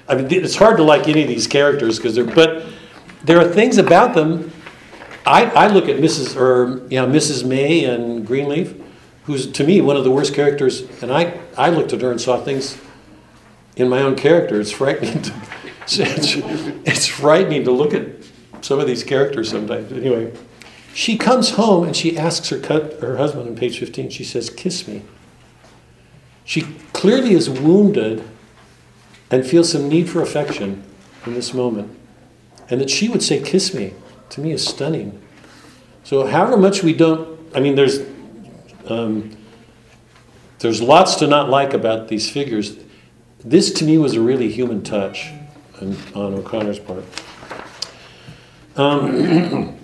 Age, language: 60-79, English